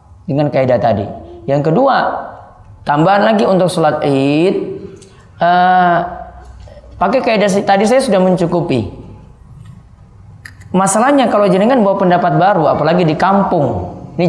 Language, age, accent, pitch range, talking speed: Indonesian, 20-39, native, 140-195 Hz, 115 wpm